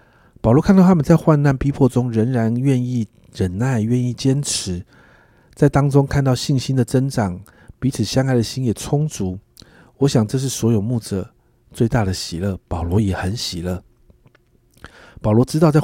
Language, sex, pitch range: Chinese, male, 105-135 Hz